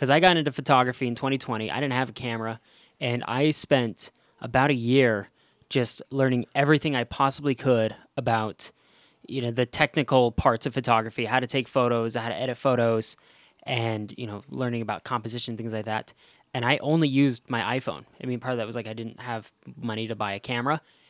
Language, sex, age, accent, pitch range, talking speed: English, male, 10-29, American, 115-135 Hz, 200 wpm